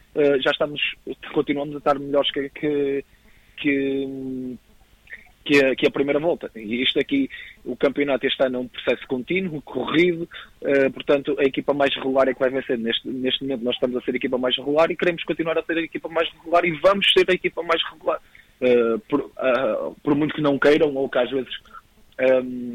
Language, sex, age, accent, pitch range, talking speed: Portuguese, male, 20-39, Portuguese, 130-145 Hz, 205 wpm